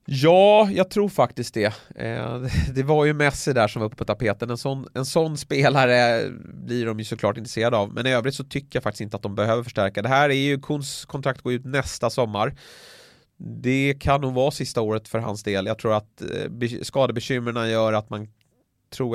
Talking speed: 205 wpm